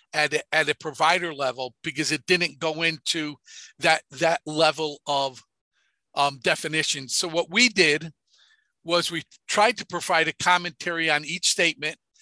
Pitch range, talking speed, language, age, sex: 150-175 Hz, 150 wpm, English, 50-69, male